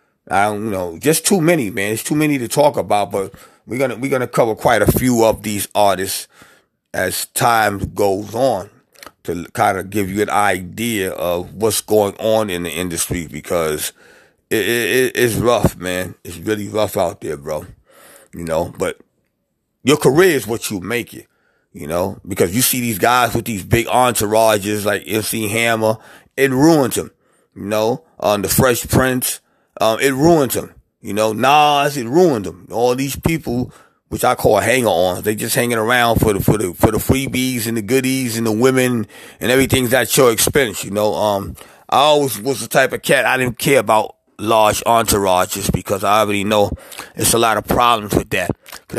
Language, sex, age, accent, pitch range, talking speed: English, male, 30-49, American, 105-130 Hz, 190 wpm